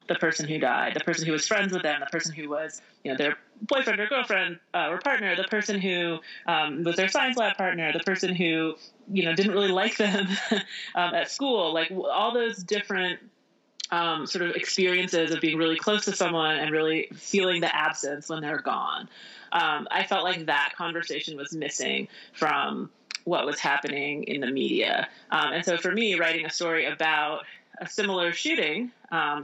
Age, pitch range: 30-49, 155-190 Hz